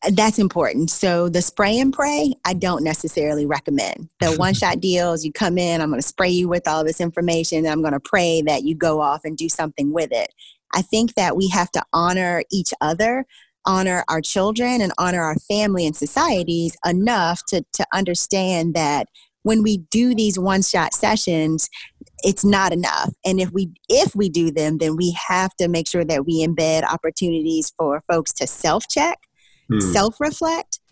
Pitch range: 170-210 Hz